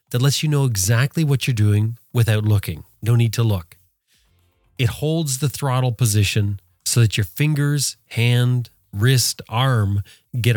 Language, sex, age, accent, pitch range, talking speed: English, male, 30-49, American, 105-135 Hz, 155 wpm